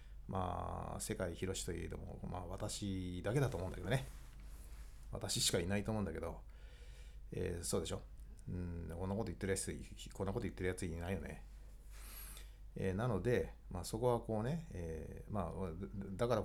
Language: Japanese